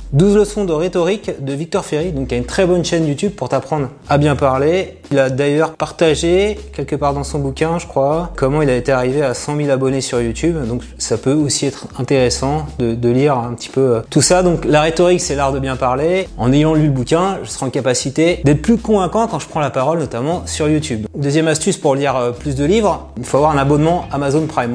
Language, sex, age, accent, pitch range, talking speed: French, male, 30-49, French, 130-170 Hz, 245 wpm